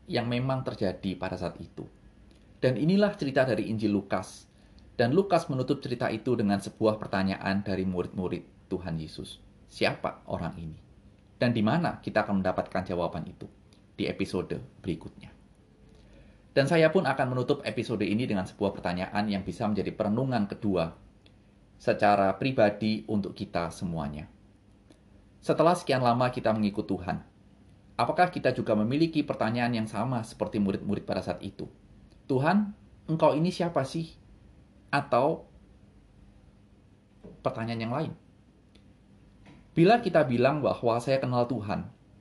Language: Indonesian